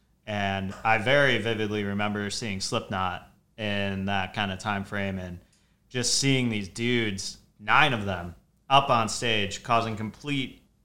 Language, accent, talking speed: English, American, 145 wpm